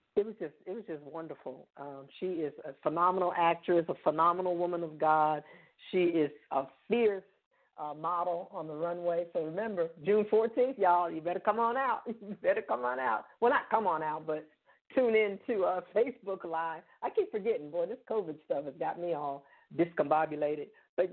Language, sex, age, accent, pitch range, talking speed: English, female, 50-69, American, 155-190 Hz, 185 wpm